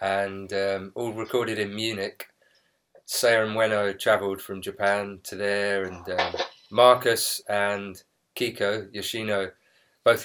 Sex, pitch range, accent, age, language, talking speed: male, 100-115 Hz, British, 20-39, English, 125 wpm